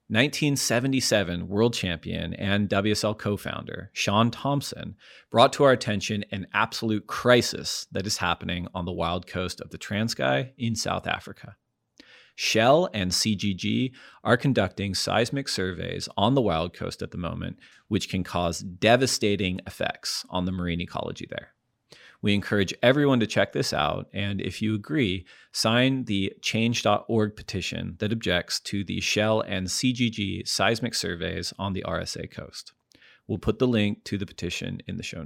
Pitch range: 95-115 Hz